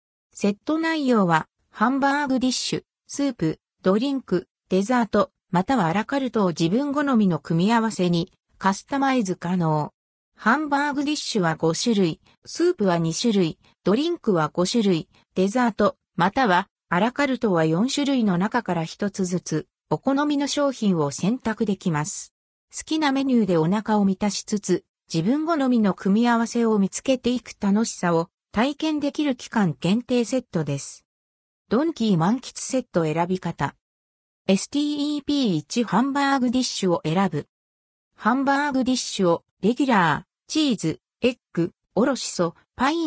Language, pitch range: Japanese, 170-255 Hz